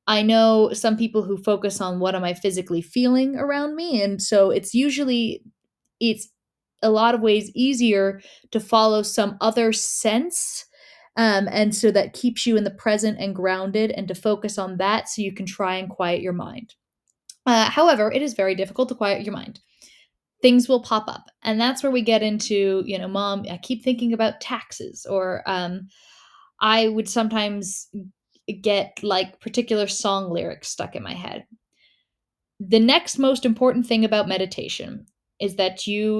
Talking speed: 175 wpm